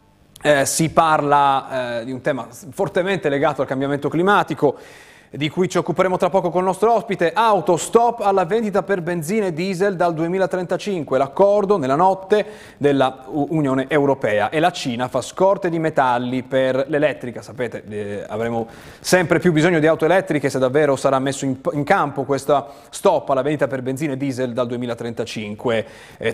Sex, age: male, 30-49